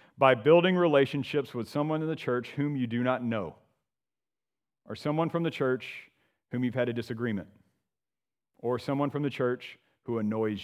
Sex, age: male, 40-59